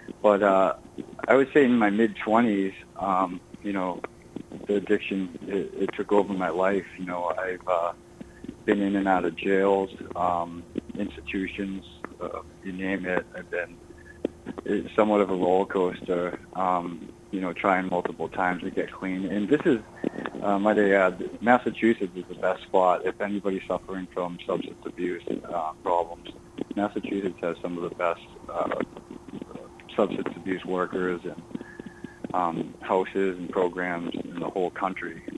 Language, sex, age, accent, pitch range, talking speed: English, male, 20-39, American, 90-100 Hz, 150 wpm